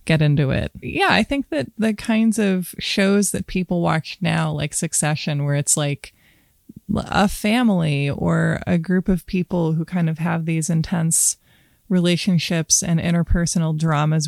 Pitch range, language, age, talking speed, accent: 155-175 Hz, English, 20-39, 155 wpm, American